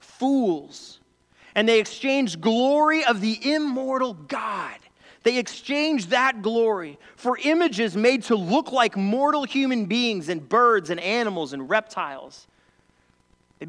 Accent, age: American, 30-49